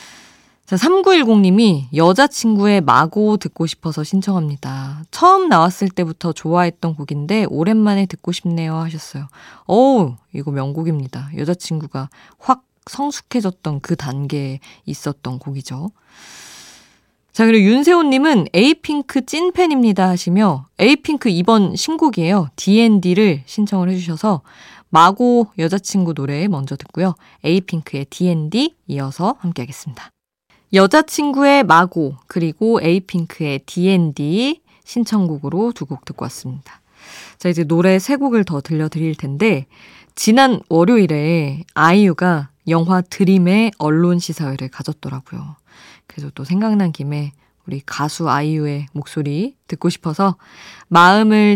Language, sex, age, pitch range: Korean, female, 20-39, 150-210 Hz